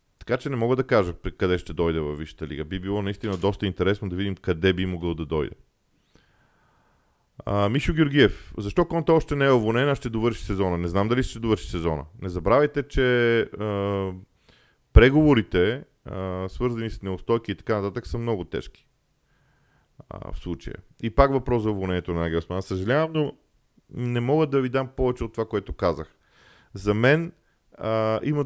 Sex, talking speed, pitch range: male, 175 wpm, 95-125 Hz